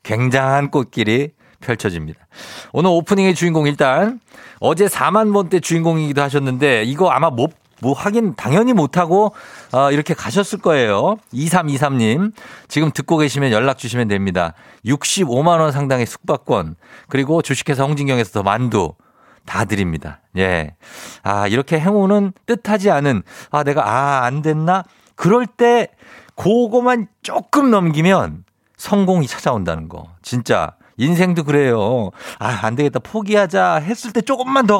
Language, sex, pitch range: Korean, male, 125-185 Hz